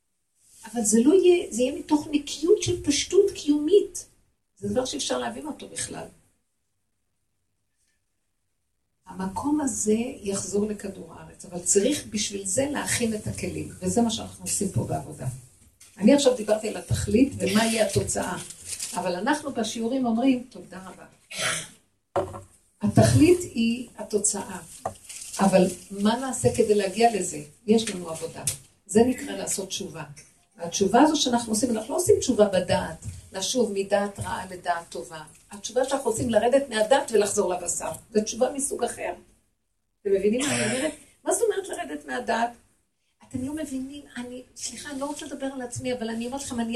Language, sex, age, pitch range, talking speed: Hebrew, female, 50-69, 185-265 Hz, 150 wpm